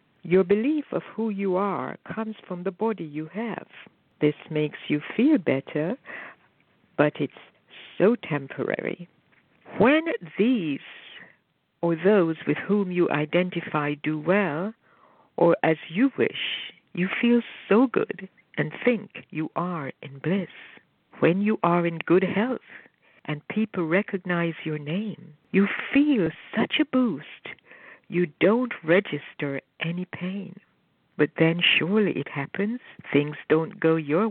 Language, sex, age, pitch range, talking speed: English, female, 60-79, 155-210 Hz, 130 wpm